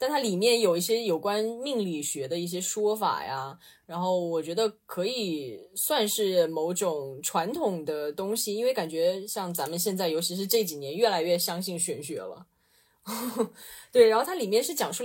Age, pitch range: 20-39, 170-230 Hz